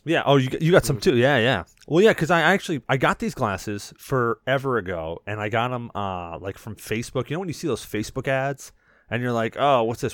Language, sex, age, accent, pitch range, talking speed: English, male, 30-49, American, 100-140 Hz, 255 wpm